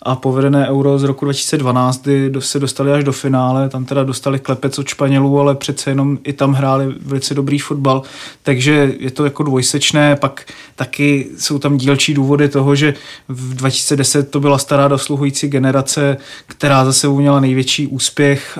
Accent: native